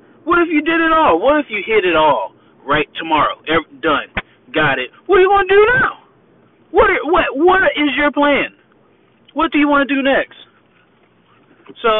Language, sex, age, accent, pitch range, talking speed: English, male, 30-49, American, 170-275 Hz, 195 wpm